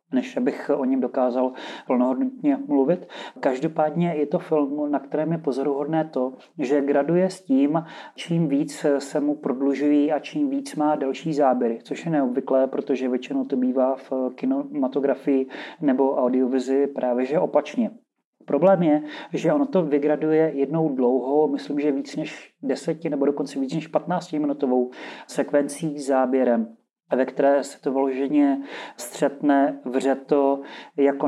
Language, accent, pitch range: Czech, native, 135-155 Hz